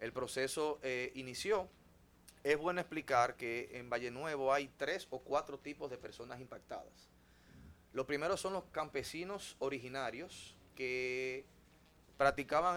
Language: Spanish